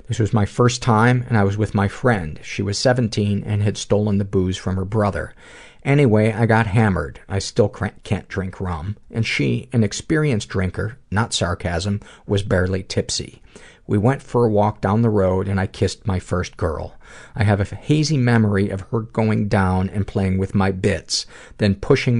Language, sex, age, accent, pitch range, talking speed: English, male, 50-69, American, 95-110 Hz, 190 wpm